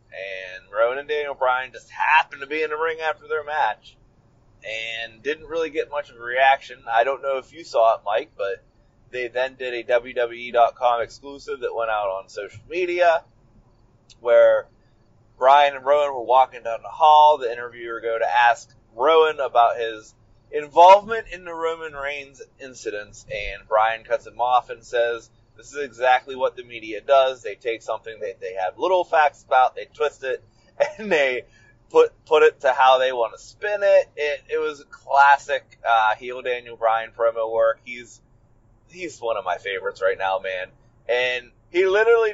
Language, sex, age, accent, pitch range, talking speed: English, male, 30-49, American, 120-195 Hz, 180 wpm